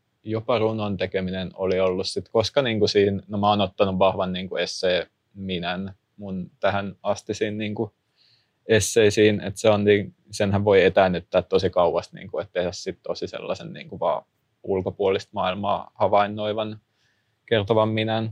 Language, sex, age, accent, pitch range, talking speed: Finnish, male, 20-39, native, 100-110 Hz, 135 wpm